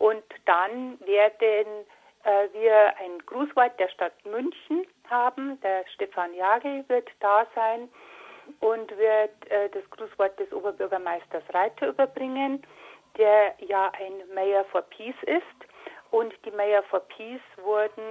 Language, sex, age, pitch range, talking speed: German, female, 60-79, 205-250 Hz, 130 wpm